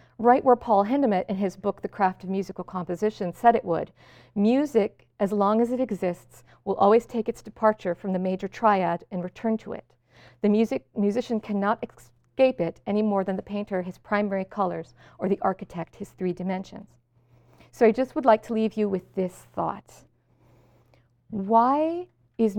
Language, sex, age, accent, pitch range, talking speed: English, female, 50-69, American, 180-225 Hz, 180 wpm